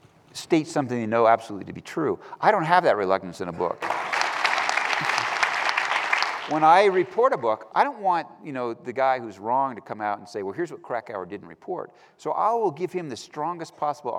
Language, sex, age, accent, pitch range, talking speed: English, male, 50-69, American, 105-155 Hz, 205 wpm